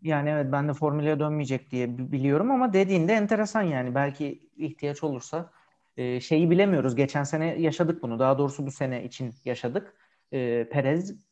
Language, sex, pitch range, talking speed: Turkish, male, 130-170 Hz, 160 wpm